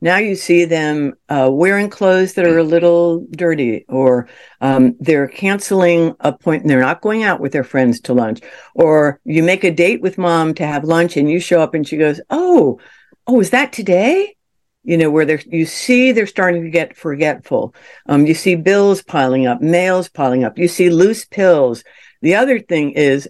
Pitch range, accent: 140-185 Hz, American